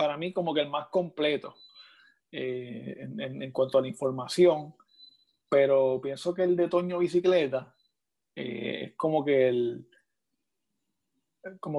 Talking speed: 145 wpm